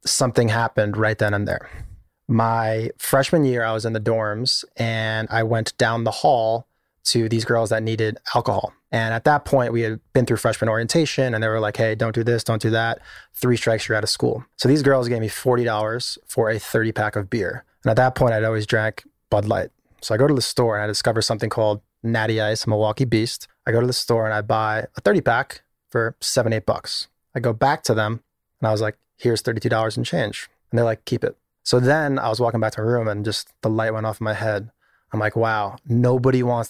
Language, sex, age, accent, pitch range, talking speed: English, male, 20-39, American, 110-125 Hz, 235 wpm